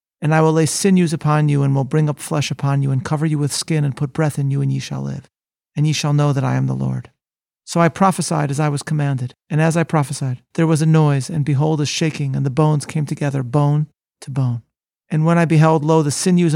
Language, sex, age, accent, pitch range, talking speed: English, male, 40-59, American, 135-160 Hz, 255 wpm